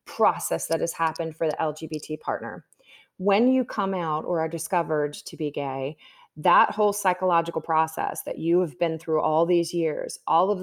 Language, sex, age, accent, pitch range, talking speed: English, female, 30-49, American, 165-200 Hz, 180 wpm